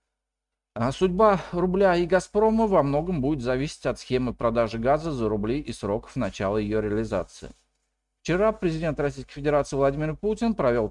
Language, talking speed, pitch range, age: Russian, 145 wpm, 115-170 Hz, 40-59